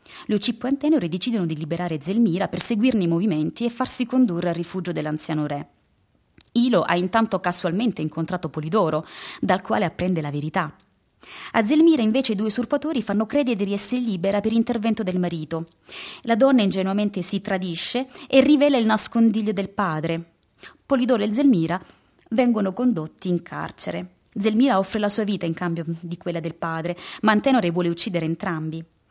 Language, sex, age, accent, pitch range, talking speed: Italian, female, 20-39, native, 170-230 Hz, 165 wpm